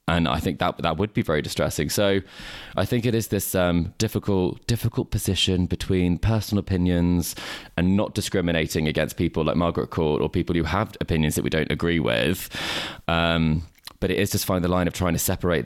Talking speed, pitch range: 200 wpm, 85-95 Hz